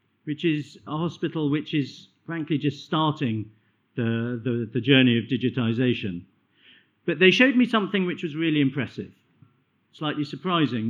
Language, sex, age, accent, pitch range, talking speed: English, male, 50-69, British, 135-165 Hz, 140 wpm